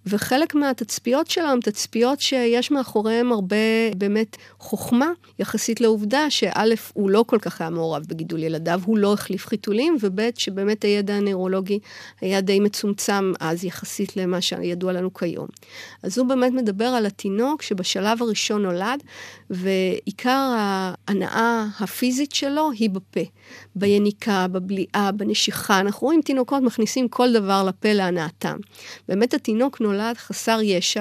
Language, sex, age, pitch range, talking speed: Hebrew, female, 40-59, 190-235 Hz, 135 wpm